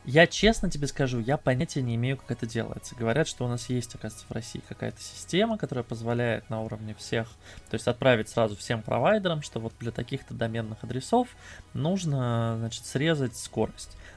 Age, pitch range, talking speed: 20-39, 115-150 Hz, 180 wpm